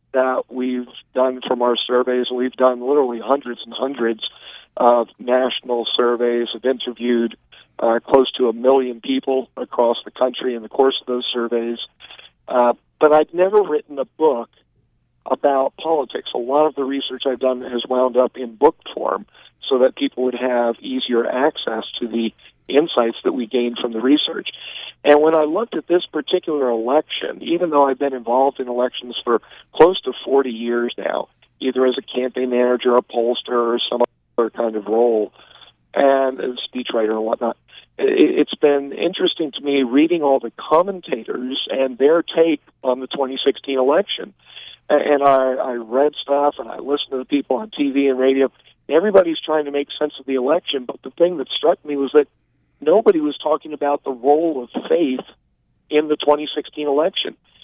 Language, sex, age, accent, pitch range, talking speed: English, male, 50-69, American, 125-145 Hz, 175 wpm